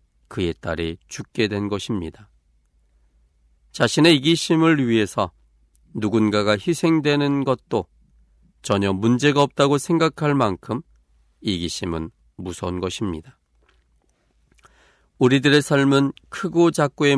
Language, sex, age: Korean, male, 40-59